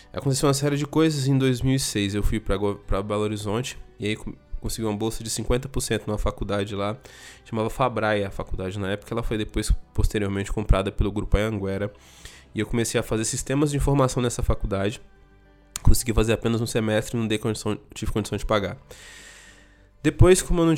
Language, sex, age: Portuguese, male, 20-39